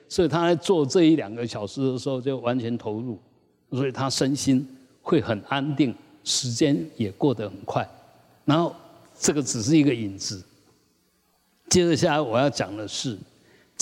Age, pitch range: 60-79, 125-175 Hz